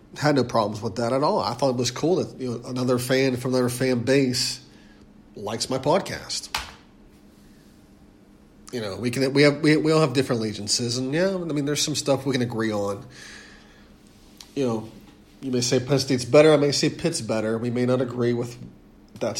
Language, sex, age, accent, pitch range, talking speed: English, male, 40-59, American, 115-140 Hz, 205 wpm